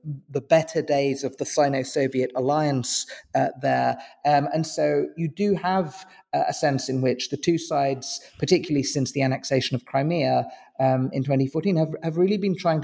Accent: British